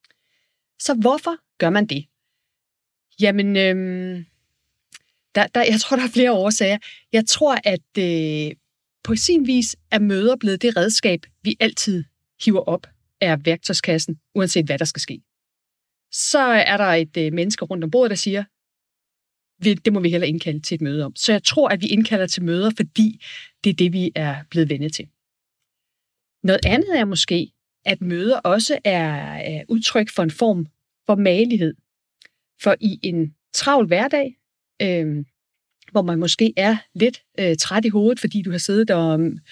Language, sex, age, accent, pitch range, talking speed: Danish, female, 30-49, native, 170-225 Hz, 160 wpm